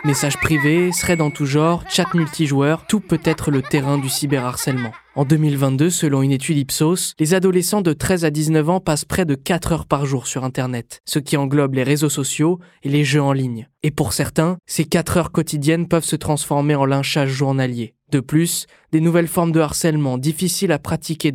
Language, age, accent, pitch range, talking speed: French, 20-39, French, 140-165 Hz, 200 wpm